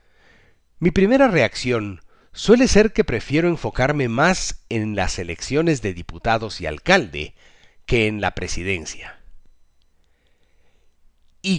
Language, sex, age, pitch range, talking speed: Spanish, male, 50-69, 95-150 Hz, 110 wpm